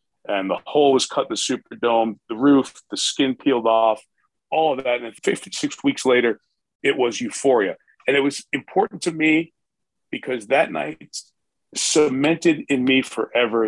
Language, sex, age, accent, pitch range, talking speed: English, male, 40-59, American, 120-170 Hz, 165 wpm